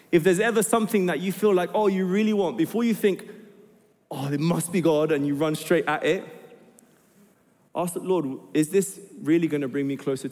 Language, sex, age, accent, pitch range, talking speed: English, male, 20-39, British, 155-205 Hz, 215 wpm